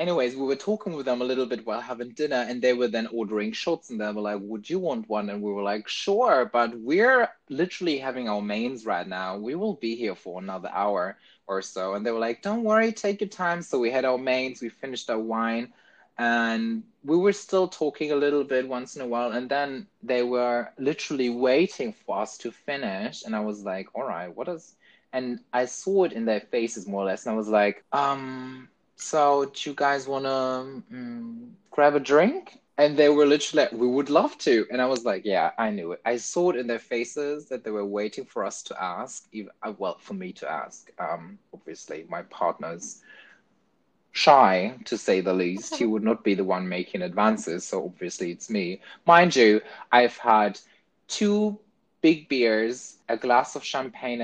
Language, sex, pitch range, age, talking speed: English, male, 115-150 Hz, 20-39, 210 wpm